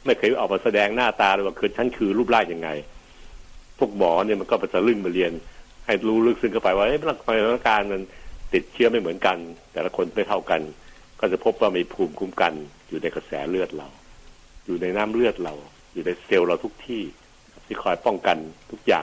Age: 60-79